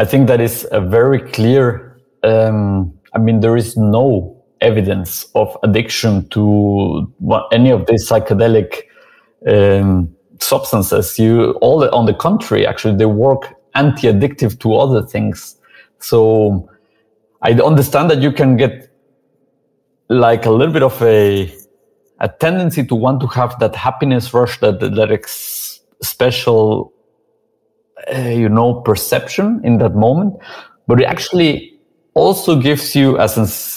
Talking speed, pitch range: 135 wpm, 110-140 Hz